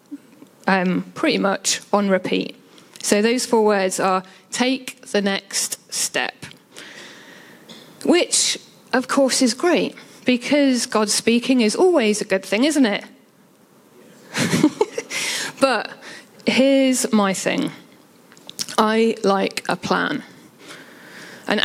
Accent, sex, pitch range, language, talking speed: British, female, 205-265 Hz, English, 105 wpm